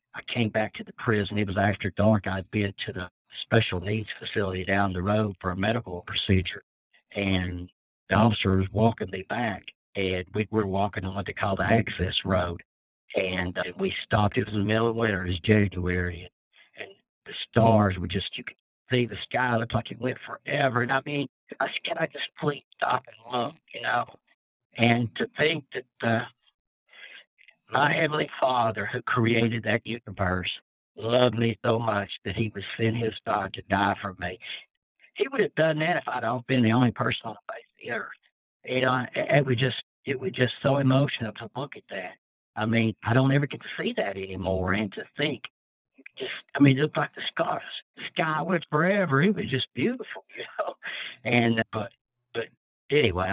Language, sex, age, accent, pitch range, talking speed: English, male, 60-79, American, 100-125 Hz, 200 wpm